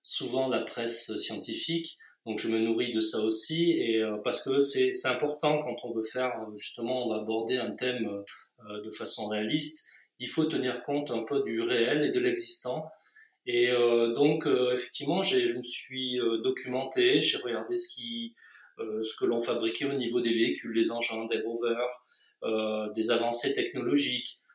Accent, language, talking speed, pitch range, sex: French, French, 185 wpm, 120-155 Hz, male